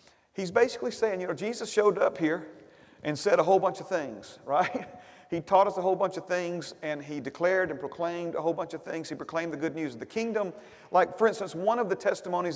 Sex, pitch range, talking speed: male, 165-215 Hz, 240 wpm